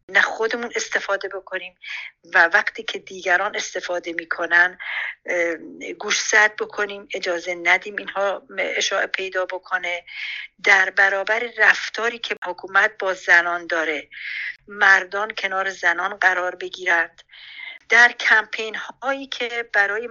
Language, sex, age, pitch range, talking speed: Persian, female, 50-69, 185-220 Hz, 110 wpm